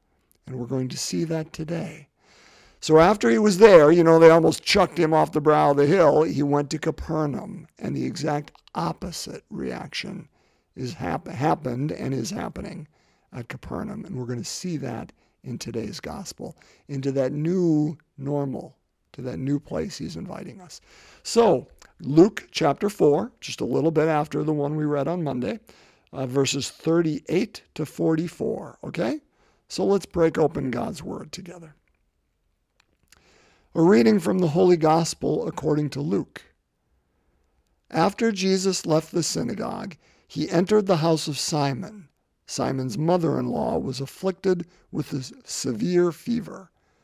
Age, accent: 50-69, American